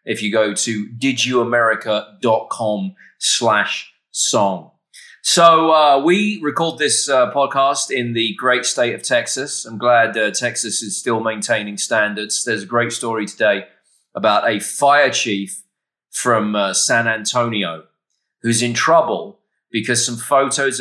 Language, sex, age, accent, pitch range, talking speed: English, male, 20-39, British, 110-150 Hz, 135 wpm